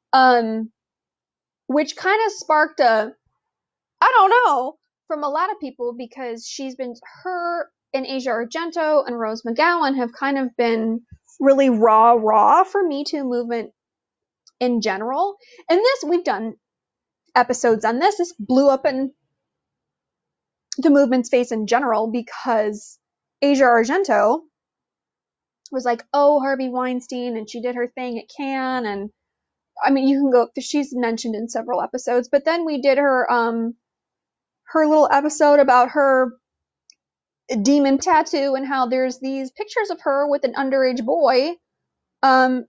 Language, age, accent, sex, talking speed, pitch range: English, 20-39, American, female, 145 wpm, 235-305 Hz